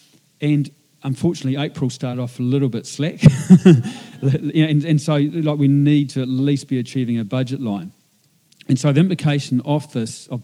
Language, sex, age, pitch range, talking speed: English, male, 40-59, 120-145 Hz, 170 wpm